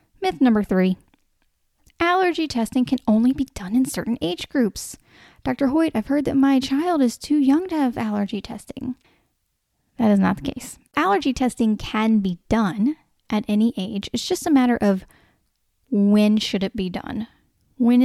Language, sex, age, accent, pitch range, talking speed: English, female, 10-29, American, 200-255 Hz, 170 wpm